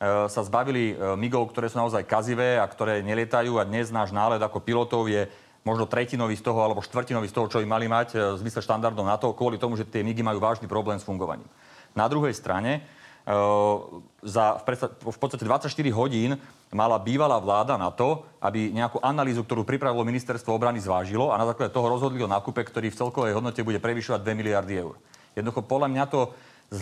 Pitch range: 110-125 Hz